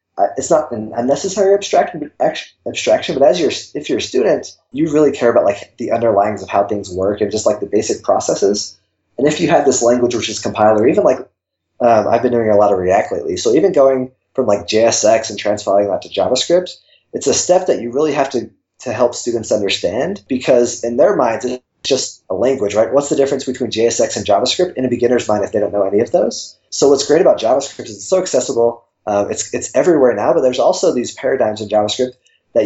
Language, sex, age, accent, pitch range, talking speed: English, male, 20-39, American, 105-130 Hz, 225 wpm